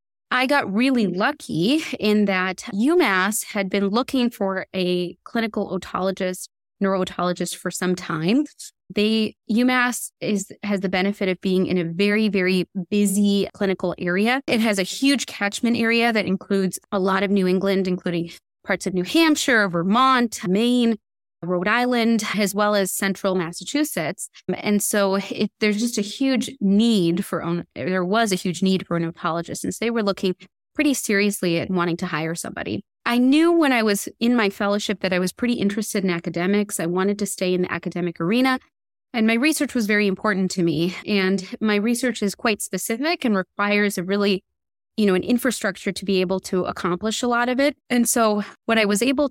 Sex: female